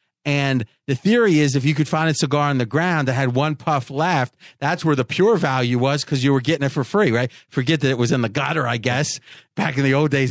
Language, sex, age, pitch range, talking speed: English, male, 40-59, 130-160 Hz, 270 wpm